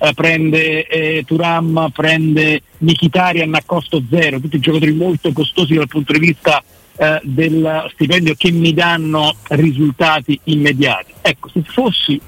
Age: 50-69